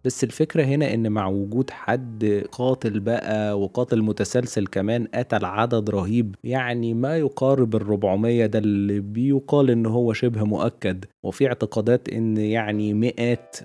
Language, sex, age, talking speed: Arabic, male, 20-39, 135 wpm